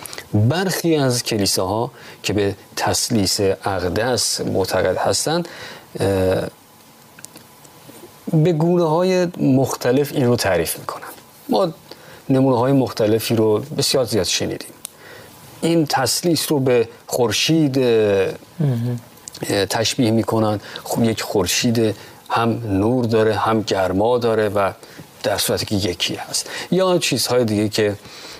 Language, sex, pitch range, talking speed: Persian, male, 105-145 Hz, 110 wpm